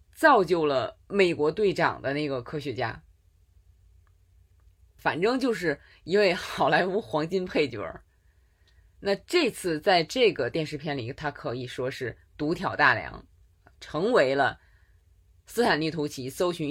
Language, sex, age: Chinese, female, 20-39